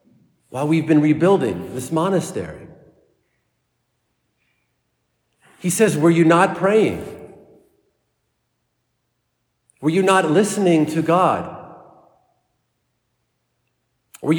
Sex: male